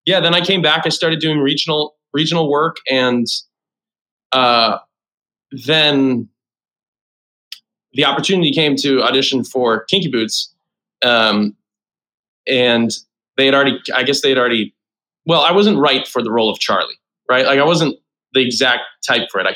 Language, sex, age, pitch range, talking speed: English, male, 20-39, 115-135 Hz, 155 wpm